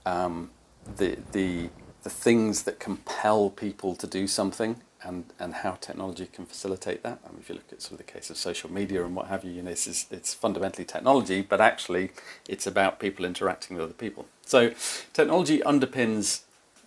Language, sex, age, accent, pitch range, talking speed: English, male, 40-59, British, 95-130 Hz, 190 wpm